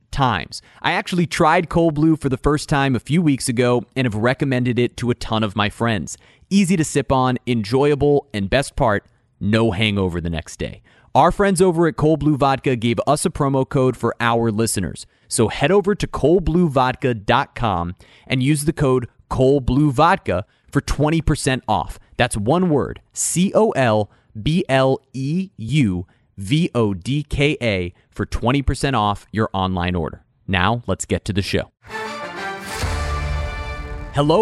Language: English